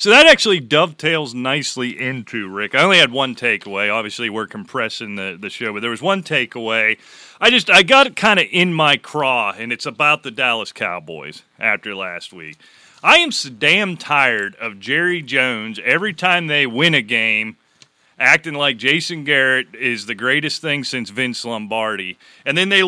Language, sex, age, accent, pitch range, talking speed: English, male, 30-49, American, 115-165 Hz, 185 wpm